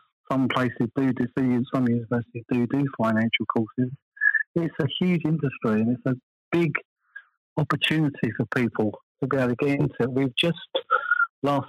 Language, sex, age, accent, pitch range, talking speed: English, male, 40-59, British, 120-145 Hz, 160 wpm